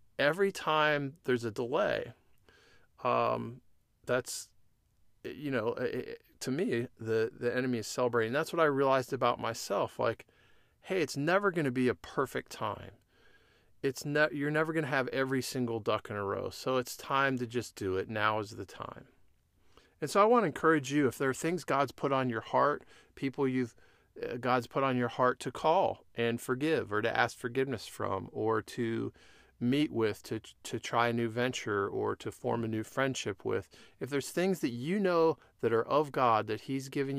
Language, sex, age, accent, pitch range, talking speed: English, male, 40-59, American, 115-135 Hz, 190 wpm